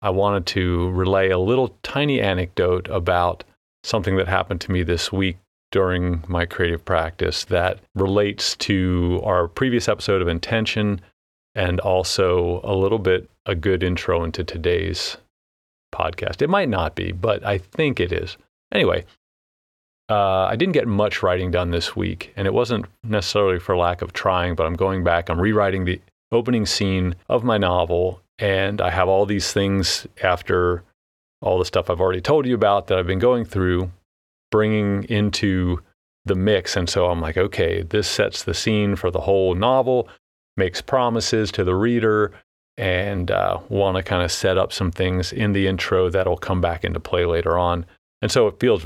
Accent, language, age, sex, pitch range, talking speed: American, English, 40-59, male, 90-100 Hz, 175 wpm